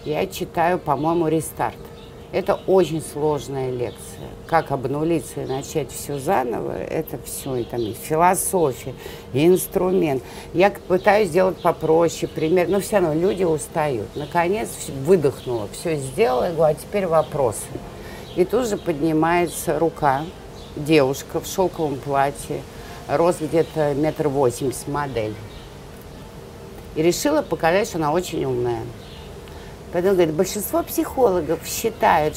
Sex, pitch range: female, 150-200 Hz